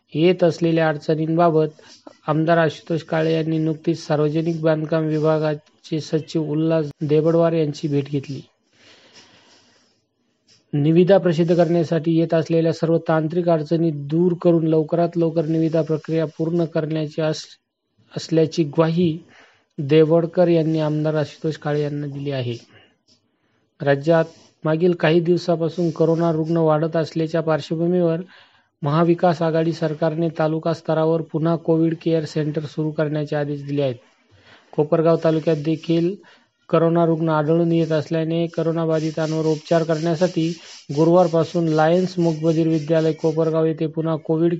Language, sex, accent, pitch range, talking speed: Marathi, male, native, 155-165 Hz, 100 wpm